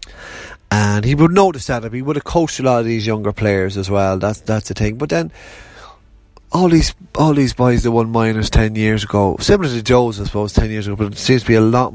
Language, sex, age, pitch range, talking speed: English, male, 30-49, 95-120 Hz, 250 wpm